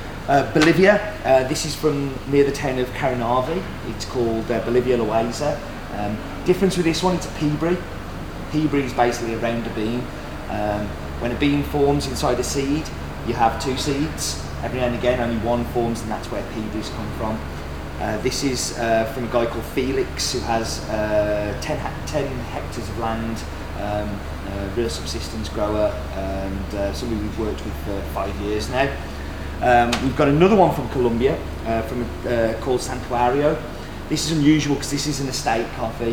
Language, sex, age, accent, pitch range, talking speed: English, male, 30-49, British, 100-125 Hz, 180 wpm